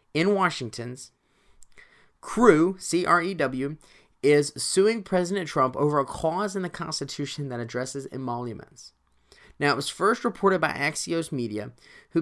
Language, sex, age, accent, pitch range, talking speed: English, male, 30-49, American, 135-190 Hz, 130 wpm